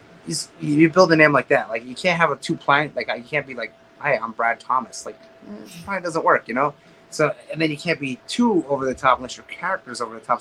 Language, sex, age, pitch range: English, male, 30-49, 115-150 Hz